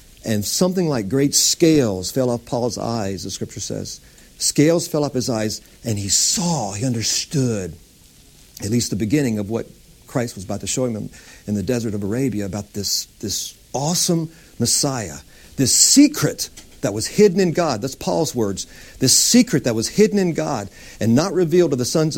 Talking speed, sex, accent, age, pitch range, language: 180 wpm, male, American, 50-69, 110-155 Hz, English